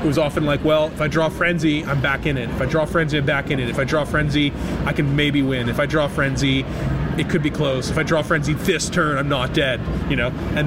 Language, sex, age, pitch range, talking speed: English, male, 20-39, 135-160 Hz, 275 wpm